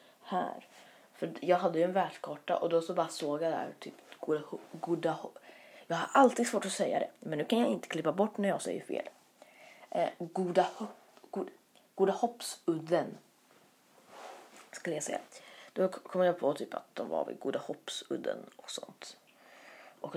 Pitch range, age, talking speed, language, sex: 150-185 Hz, 30-49, 180 wpm, Swedish, female